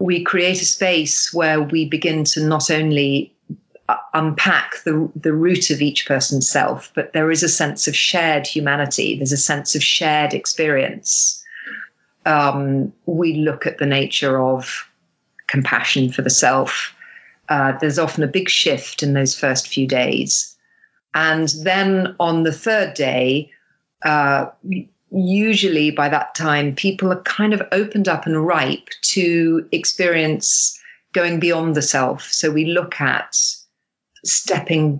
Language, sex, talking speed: English, female, 140 wpm